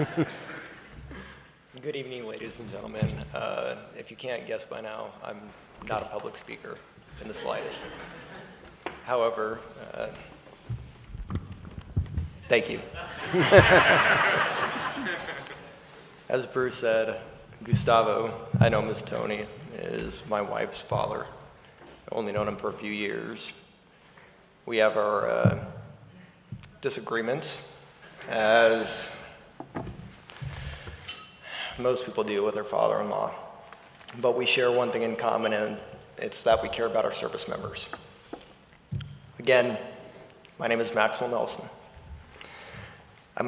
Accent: American